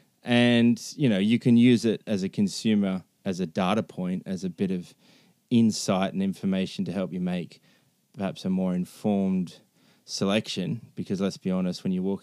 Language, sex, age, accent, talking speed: English, male, 20-39, Australian, 180 wpm